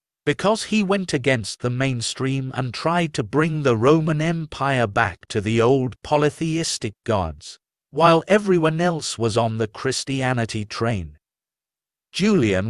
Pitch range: 115-160 Hz